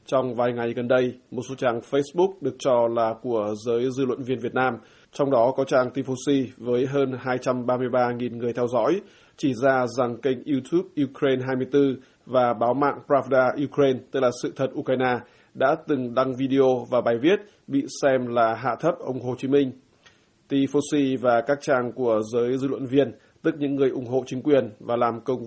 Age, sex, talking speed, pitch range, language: 20-39, male, 195 wpm, 125-135 Hz, Vietnamese